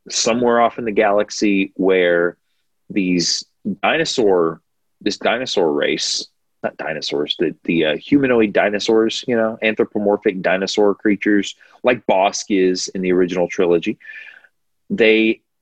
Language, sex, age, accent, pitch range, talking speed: English, male, 30-49, American, 90-110 Hz, 110 wpm